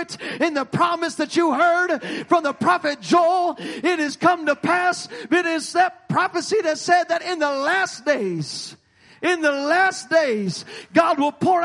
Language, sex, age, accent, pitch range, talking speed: English, male, 40-59, American, 220-340 Hz, 170 wpm